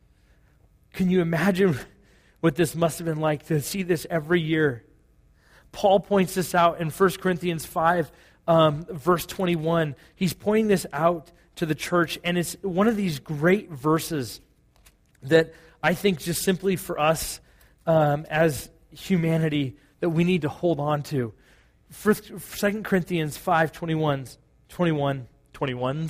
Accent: American